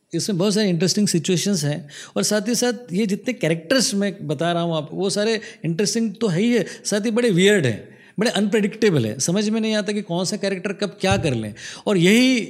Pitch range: 145-200 Hz